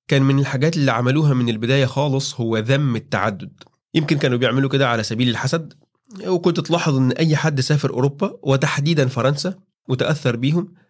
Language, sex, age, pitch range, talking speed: Arabic, male, 30-49, 120-150 Hz, 160 wpm